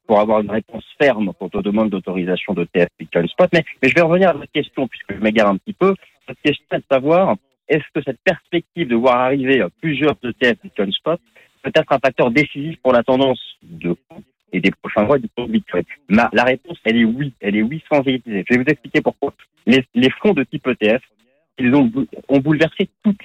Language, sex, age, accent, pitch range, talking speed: French, male, 40-59, French, 110-155 Hz, 220 wpm